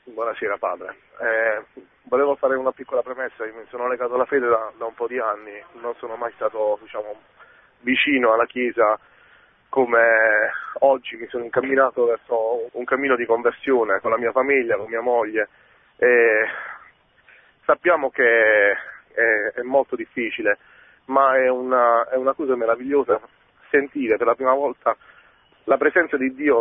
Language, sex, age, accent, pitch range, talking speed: Italian, male, 40-59, native, 125-175 Hz, 155 wpm